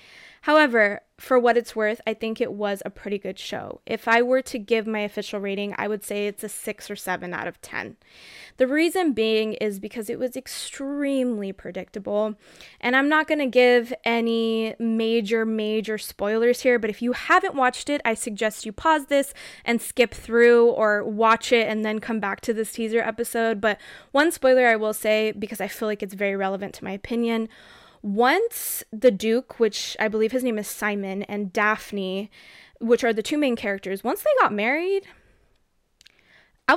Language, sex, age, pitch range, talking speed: English, female, 20-39, 215-265 Hz, 190 wpm